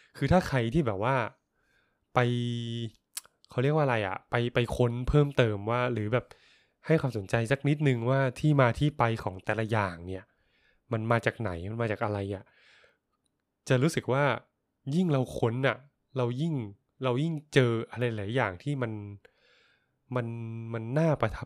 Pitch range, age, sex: 110-135 Hz, 20-39, male